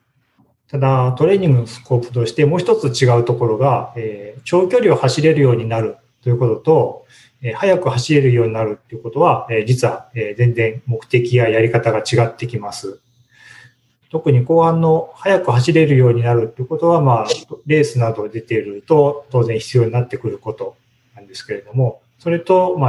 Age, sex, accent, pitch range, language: 40-59, male, native, 115-140 Hz, Japanese